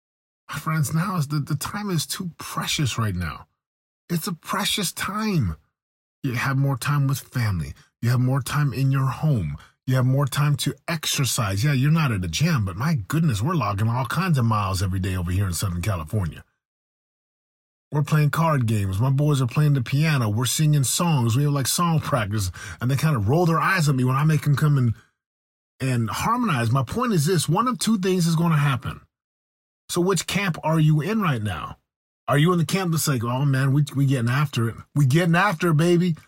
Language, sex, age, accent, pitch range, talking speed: English, male, 30-49, American, 115-160 Hz, 215 wpm